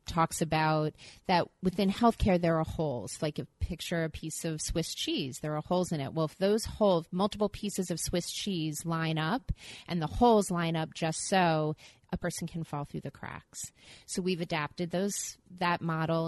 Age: 30-49